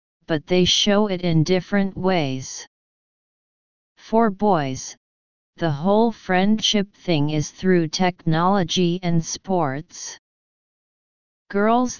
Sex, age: female, 30-49